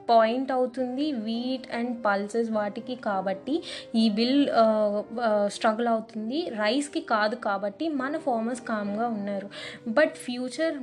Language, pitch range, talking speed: Telugu, 215-255 Hz, 110 wpm